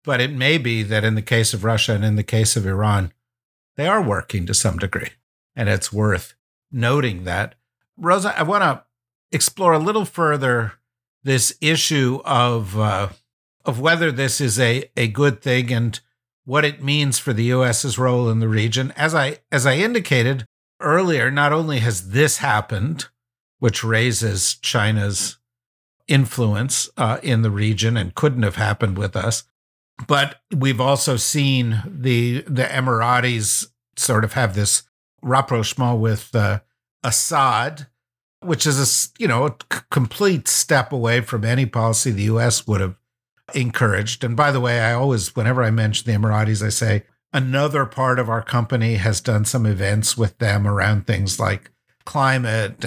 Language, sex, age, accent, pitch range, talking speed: English, male, 50-69, American, 110-135 Hz, 160 wpm